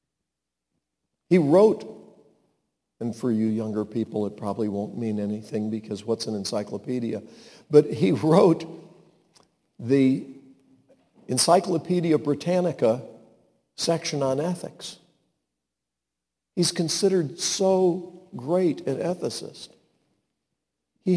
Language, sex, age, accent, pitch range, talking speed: English, male, 50-69, American, 110-170 Hz, 90 wpm